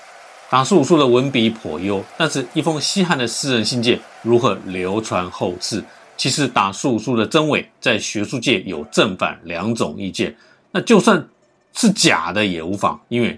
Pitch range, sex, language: 100-145 Hz, male, Chinese